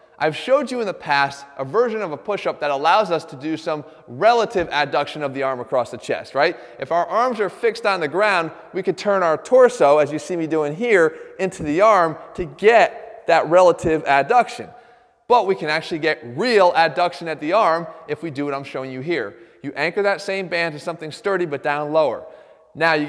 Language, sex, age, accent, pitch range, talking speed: English, male, 20-39, American, 150-200 Hz, 220 wpm